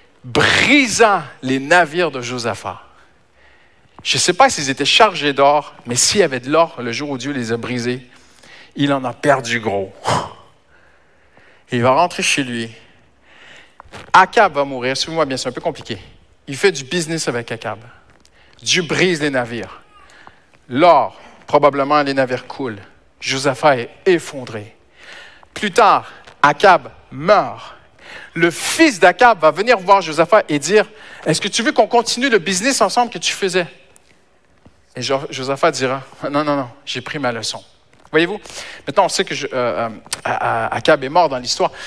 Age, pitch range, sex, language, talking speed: 50-69, 125-180 Hz, male, French, 165 wpm